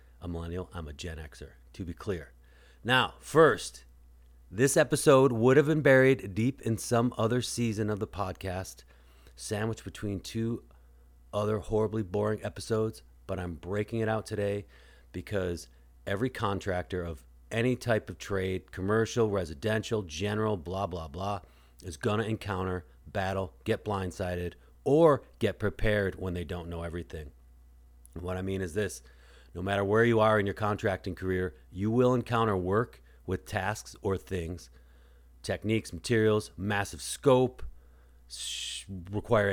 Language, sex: English, male